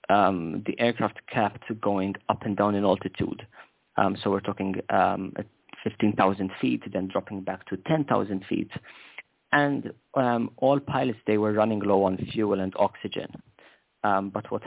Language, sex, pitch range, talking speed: English, male, 95-115 Hz, 160 wpm